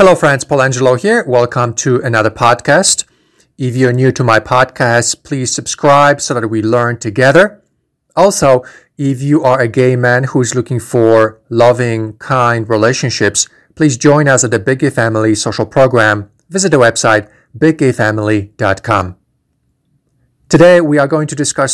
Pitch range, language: 110-140 Hz, English